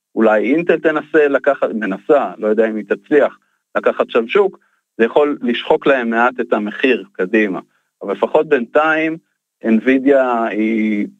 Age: 40-59